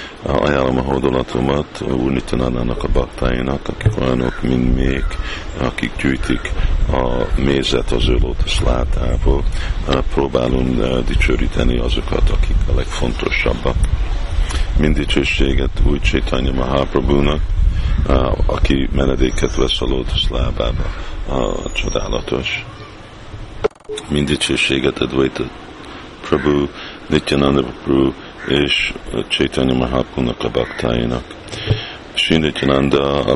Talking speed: 90 wpm